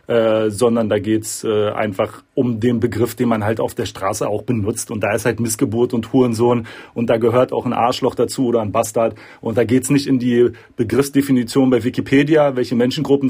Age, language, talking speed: 40-59, German, 210 wpm